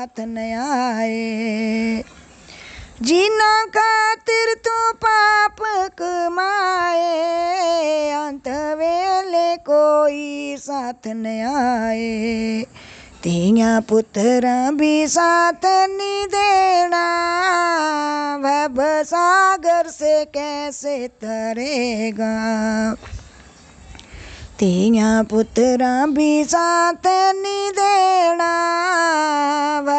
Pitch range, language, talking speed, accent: 225-345 Hz, Hindi, 60 wpm, native